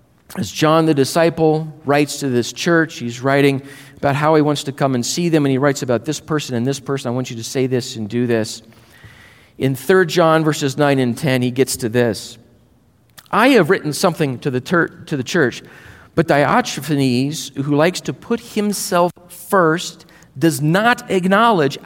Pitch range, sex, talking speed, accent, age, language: 130-180 Hz, male, 190 wpm, American, 40-59, English